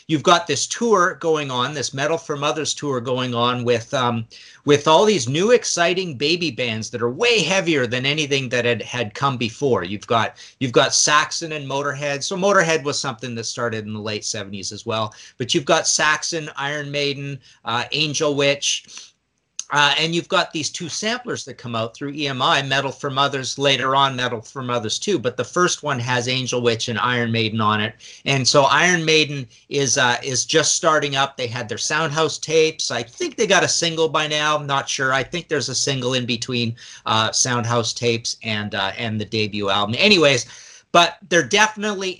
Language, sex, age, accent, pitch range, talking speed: English, male, 40-59, American, 120-150 Hz, 200 wpm